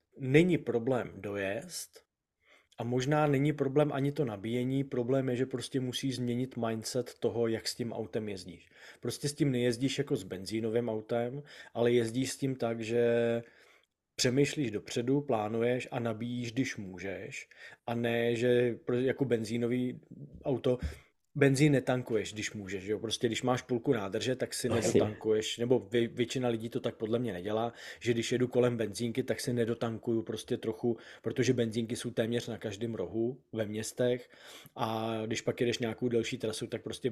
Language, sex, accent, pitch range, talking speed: Czech, male, native, 115-130 Hz, 160 wpm